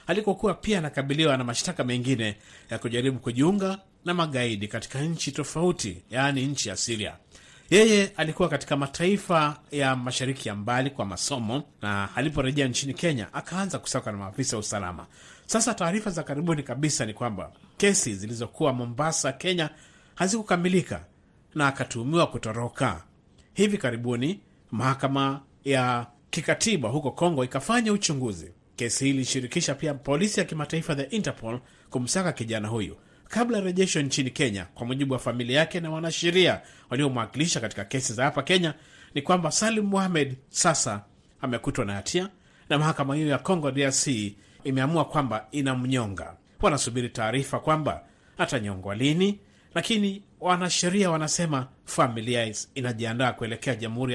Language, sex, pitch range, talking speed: Swahili, male, 120-165 Hz, 130 wpm